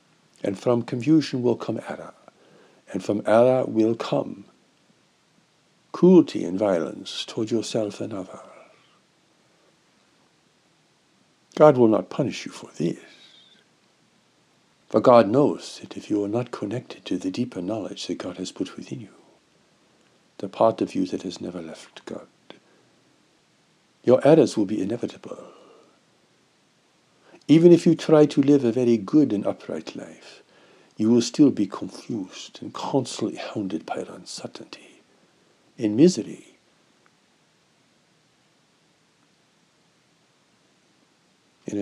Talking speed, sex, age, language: 120 wpm, male, 60-79, English